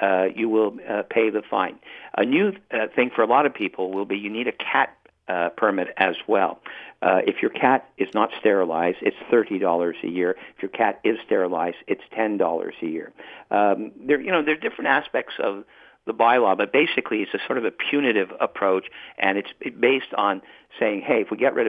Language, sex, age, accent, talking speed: English, male, 50-69, American, 205 wpm